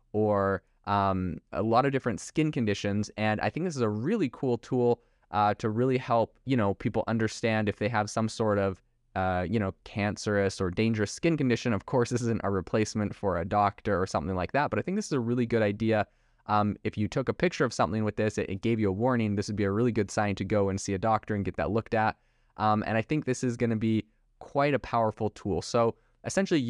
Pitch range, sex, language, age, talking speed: 100-120 Hz, male, English, 20-39, 245 wpm